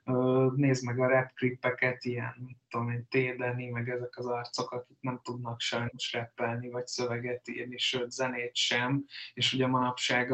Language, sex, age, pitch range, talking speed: Hungarian, male, 20-39, 120-130 Hz, 155 wpm